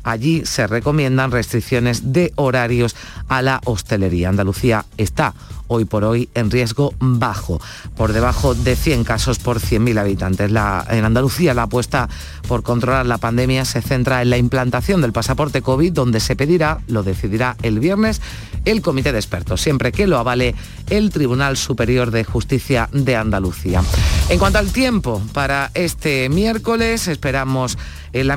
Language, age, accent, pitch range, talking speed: Spanish, 40-59, Spanish, 115-145 Hz, 155 wpm